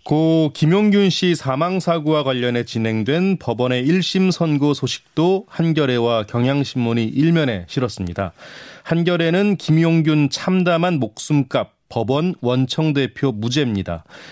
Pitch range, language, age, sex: 120-165 Hz, Korean, 30-49, male